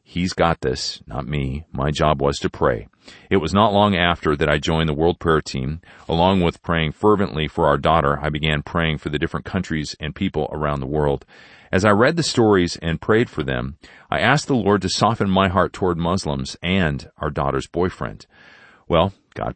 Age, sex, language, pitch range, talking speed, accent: 40-59, male, English, 75-95 Hz, 200 wpm, American